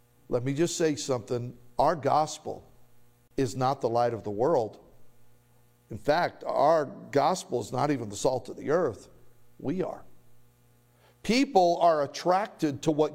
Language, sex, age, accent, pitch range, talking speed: English, male, 50-69, American, 120-190 Hz, 150 wpm